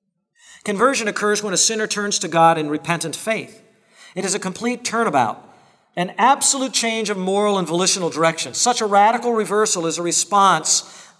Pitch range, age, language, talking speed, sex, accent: 185-245 Hz, 40-59, English, 165 wpm, male, American